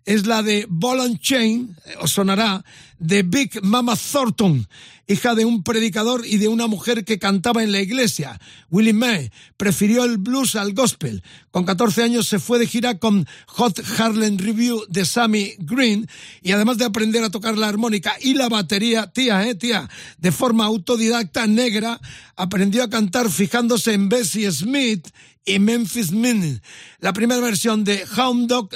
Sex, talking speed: male, 165 wpm